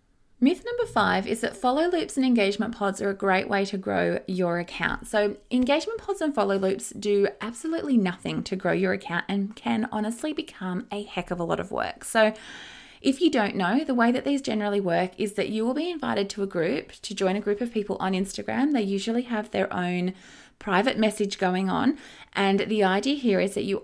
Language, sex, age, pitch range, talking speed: English, female, 20-39, 190-240 Hz, 215 wpm